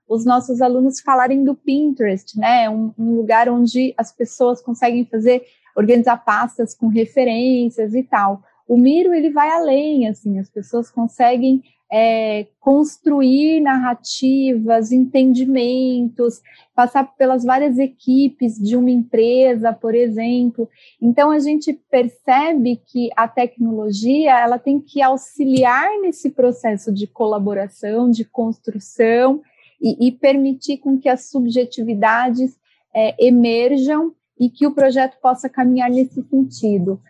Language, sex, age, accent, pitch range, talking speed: Portuguese, female, 30-49, Brazilian, 230-270 Hz, 125 wpm